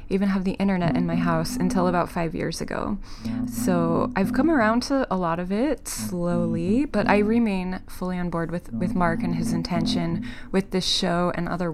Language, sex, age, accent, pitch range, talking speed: English, female, 20-39, American, 170-210 Hz, 200 wpm